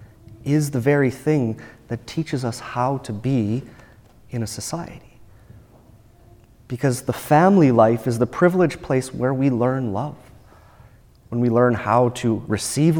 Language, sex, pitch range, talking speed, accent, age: English, male, 110-135 Hz, 145 wpm, American, 30-49